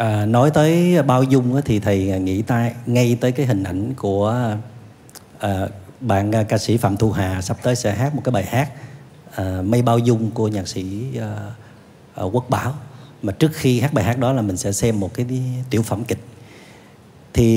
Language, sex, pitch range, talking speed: Vietnamese, male, 110-150 Hz, 195 wpm